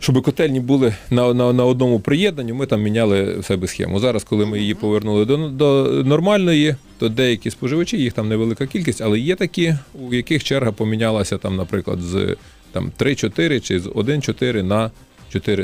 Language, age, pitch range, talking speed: Ukrainian, 30-49, 100-130 Hz, 175 wpm